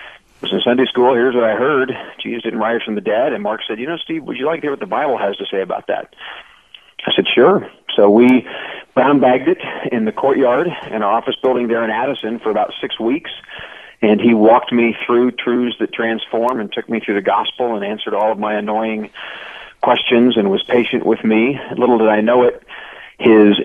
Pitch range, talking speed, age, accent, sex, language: 110-125 Hz, 220 wpm, 40-59, American, male, English